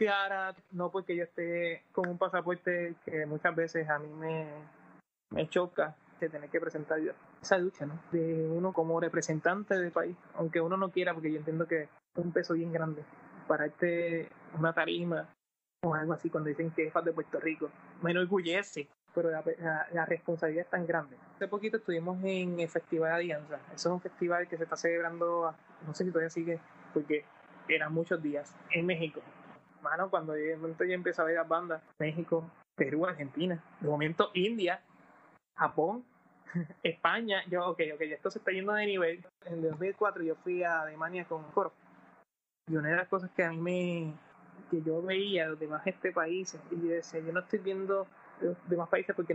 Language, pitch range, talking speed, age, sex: Spanish, 160-185 Hz, 185 wpm, 20-39, male